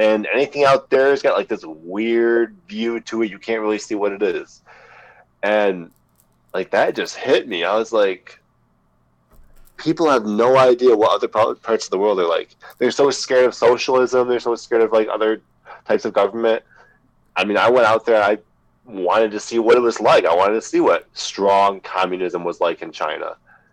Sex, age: male, 20-39